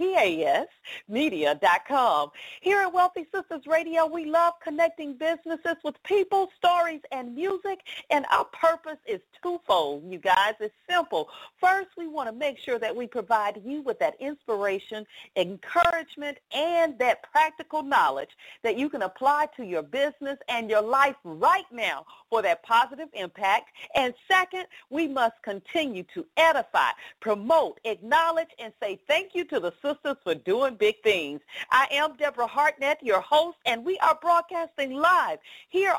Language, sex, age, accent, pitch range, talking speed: English, female, 50-69, American, 235-340 Hz, 150 wpm